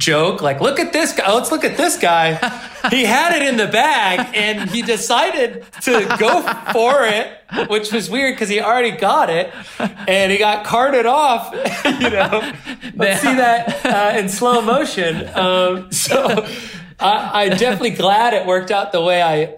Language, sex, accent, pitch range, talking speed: English, male, American, 130-195 Hz, 180 wpm